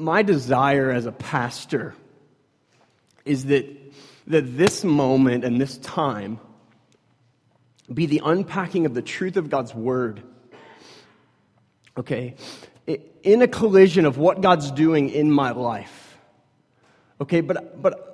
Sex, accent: male, American